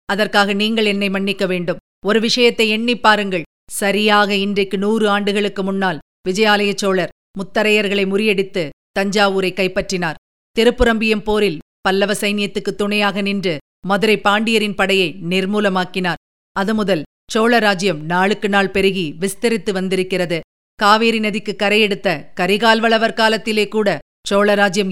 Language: Tamil